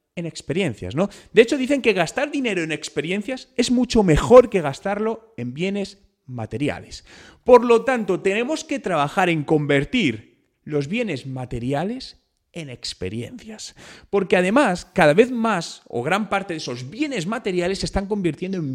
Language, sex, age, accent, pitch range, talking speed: Spanish, male, 30-49, Spanish, 140-220 Hz, 155 wpm